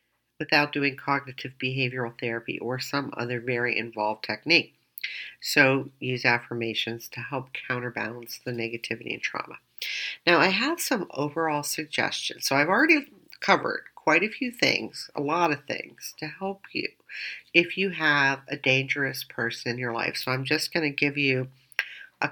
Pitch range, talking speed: 125-185 Hz, 160 wpm